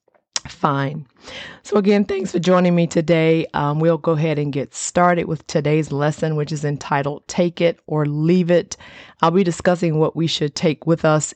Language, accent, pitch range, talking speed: English, American, 140-170 Hz, 185 wpm